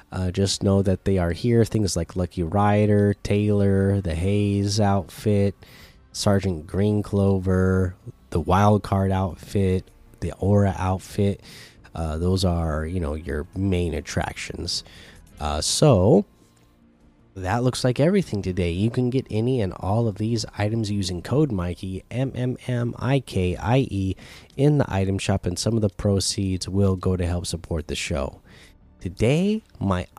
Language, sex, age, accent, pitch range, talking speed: English, male, 20-39, American, 90-115 Hz, 140 wpm